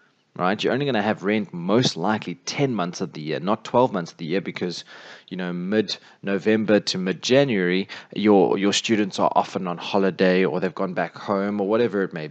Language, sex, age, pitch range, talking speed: English, male, 20-39, 90-115 Hz, 205 wpm